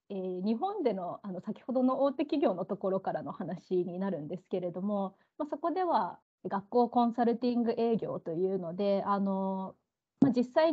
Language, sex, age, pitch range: Japanese, female, 20-39, 190-260 Hz